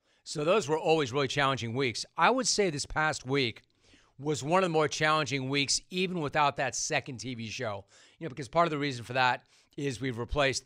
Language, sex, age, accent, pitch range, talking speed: English, male, 40-59, American, 125-165 Hz, 215 wpm